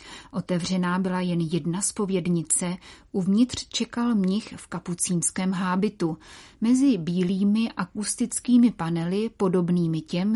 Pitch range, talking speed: 175-215 Hz, 100 wpm